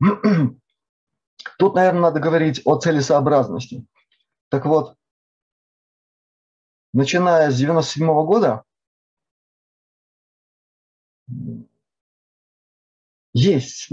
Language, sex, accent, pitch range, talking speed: Russian, male, native, 125-165 Hz, 55 wpm